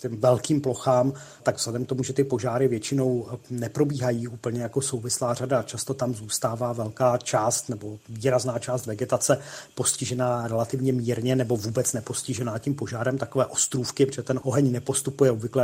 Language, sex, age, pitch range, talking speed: Czech, male, 30-49, 120-130 Hz, 155 wpm